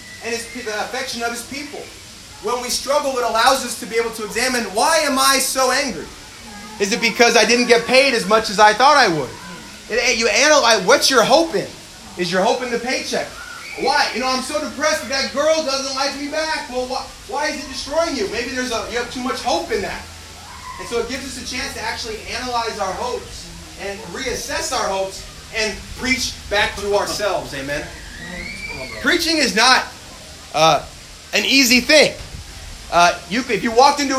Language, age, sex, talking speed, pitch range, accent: English, 30-49, male, 200 wpm, 225-270 Hz, American